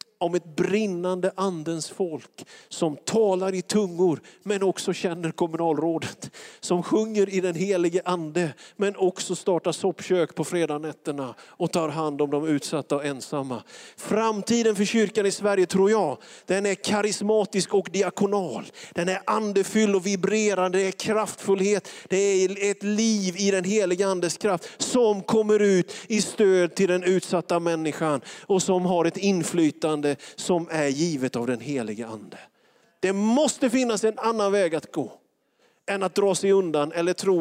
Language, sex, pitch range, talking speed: Swedish, male, 155-200 Hz, 155 wpm